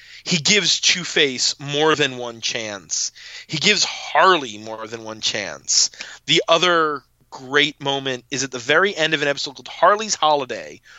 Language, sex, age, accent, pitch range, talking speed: English, male, 30-49, American, 150-210 Hz, 160 wpm